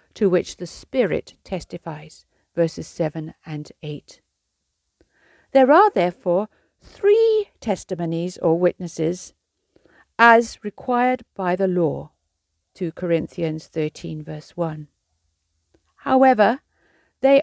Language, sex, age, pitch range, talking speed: English, female, 50-69, 150-235 Hz, 95 wpm